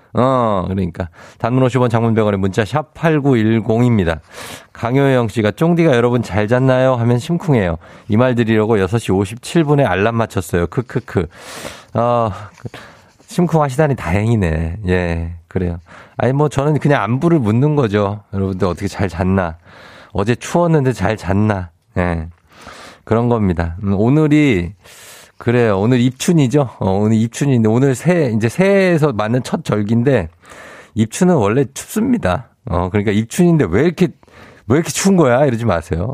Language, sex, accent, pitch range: Korean, male, native, 95-145 Hz